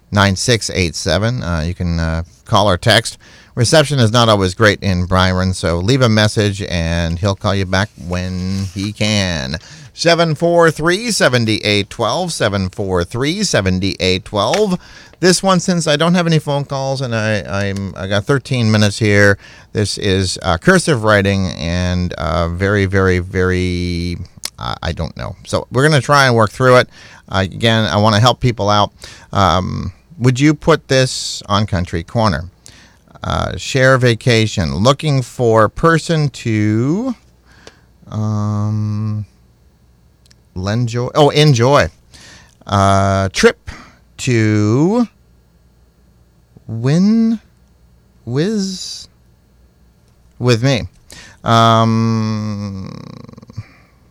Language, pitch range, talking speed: English, 90-130 Hz, 115 wpm